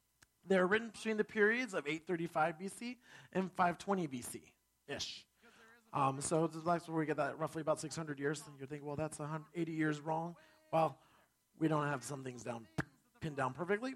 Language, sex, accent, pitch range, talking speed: English, male, American, 155-210 Hz, 170 wpm